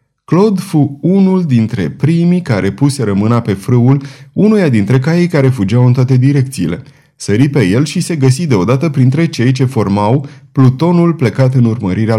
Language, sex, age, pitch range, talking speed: Romanian, male, 30-49, 115-150 Hz, 160 wpm